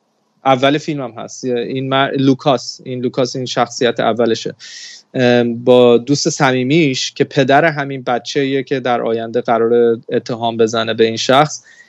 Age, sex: 20-39, male